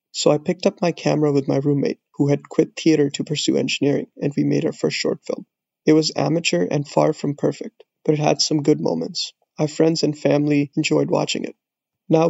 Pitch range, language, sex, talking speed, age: 150-160 Hz, English, male, 215 wpm, 20-39